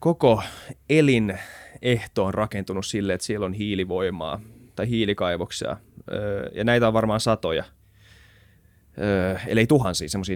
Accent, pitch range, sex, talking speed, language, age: native, 90-110 Hz, male, 115 wpm, Finnish, 20-39